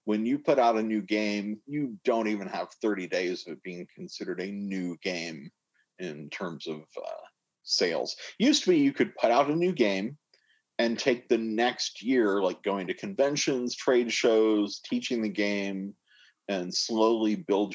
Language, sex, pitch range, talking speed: English, male, 95-115 Hz, 170 wpm